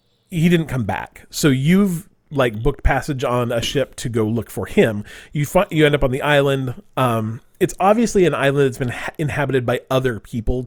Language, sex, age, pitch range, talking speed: English, male, 30-49, 115-145 Hz, 210 wpm